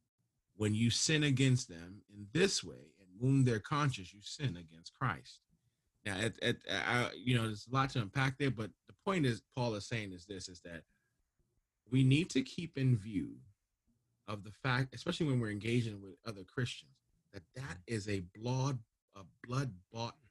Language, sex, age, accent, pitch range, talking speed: English, male, 30-49, American, 100-135 Hz, 170 wpm